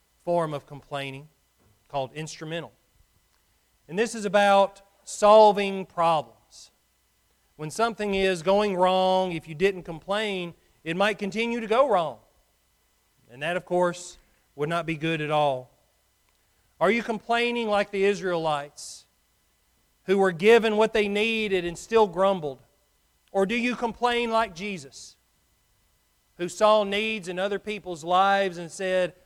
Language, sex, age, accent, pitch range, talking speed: English, male, 40-59, American, 155-200 Hz, 135 wpm